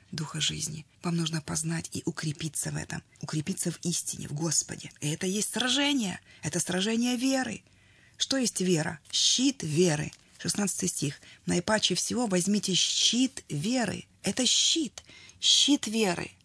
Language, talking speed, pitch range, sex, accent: Russian, 135 wpm, 165-220 Hz, female, native